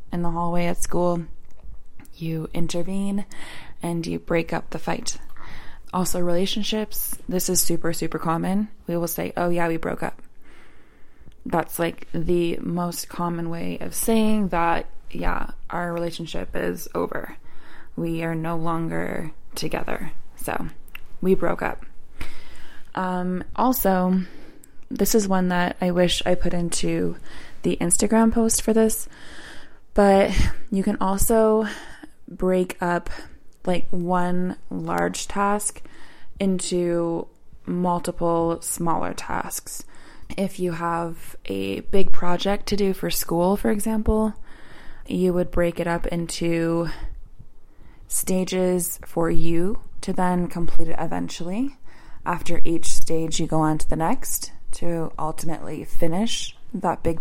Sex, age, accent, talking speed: female, 20-39, American, 125 wpm